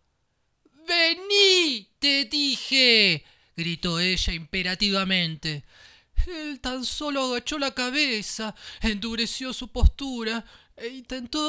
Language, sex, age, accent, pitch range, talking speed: Spanish, male, 30-49, Argentinian, 165-230 Hz, 90 wpm